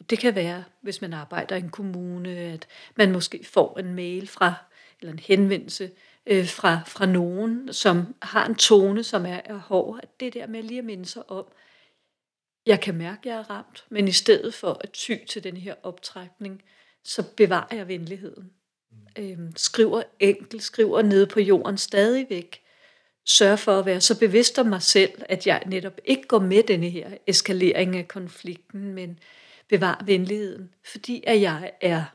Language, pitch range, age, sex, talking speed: Danish, 185-215 Hz, 40-59, female, 175 wpm